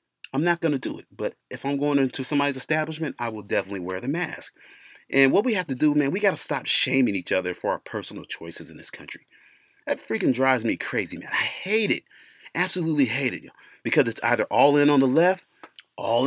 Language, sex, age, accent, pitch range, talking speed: English, male, 30-49, American, 120-175 Hz, 225 wpm